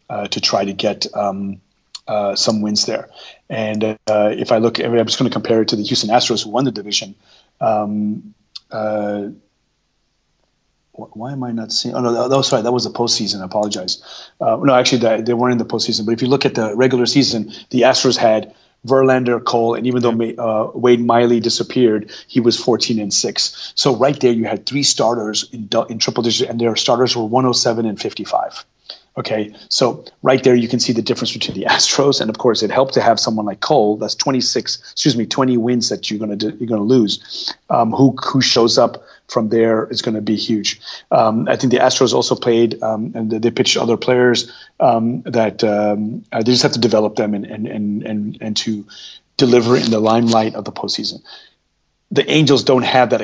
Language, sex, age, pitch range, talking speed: English, male, 30-49, 110-125 Hz, 215 wpm